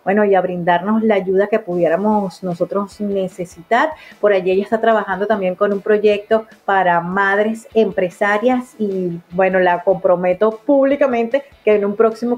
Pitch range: 185-230 Hz